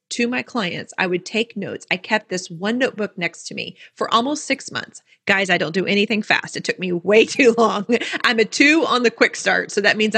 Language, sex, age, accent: English, female, 30-49, American